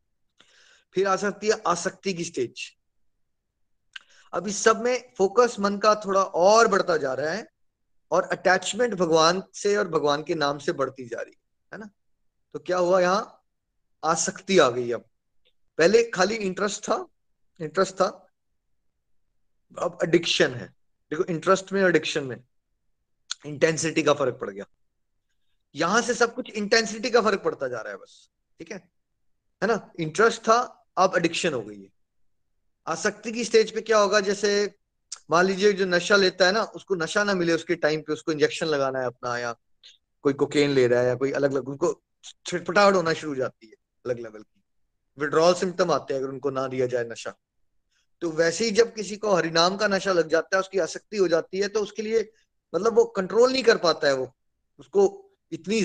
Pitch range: 150-210 Hz